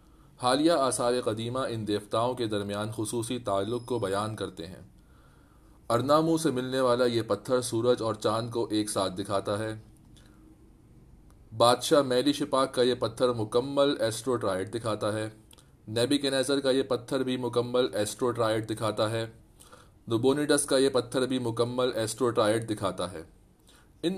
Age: 30-49